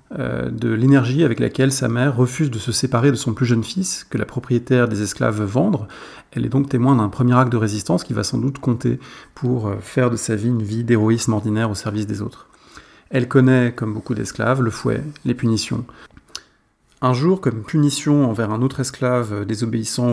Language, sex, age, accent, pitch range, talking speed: English, male, 30-49, French, 115-130 Hz, 195 wpm